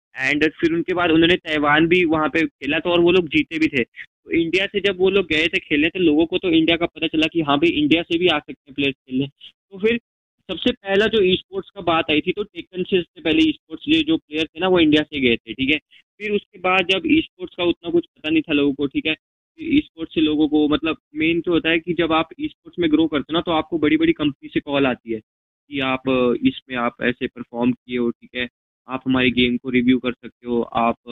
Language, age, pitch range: Hindi, 20-39, 130-170 Hz